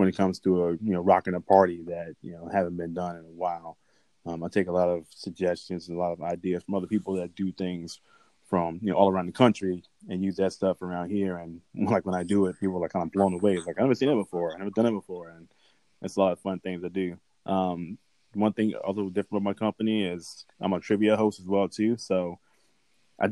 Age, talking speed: 20-39, 265 wpm